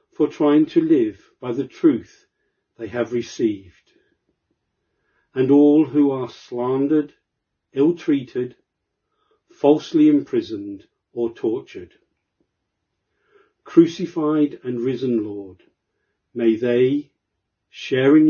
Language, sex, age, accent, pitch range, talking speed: English, male, 50-69, British, 115-155 Hz, 85 wpm